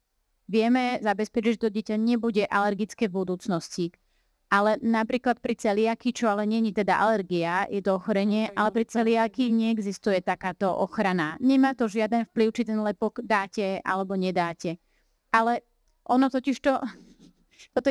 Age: 30-49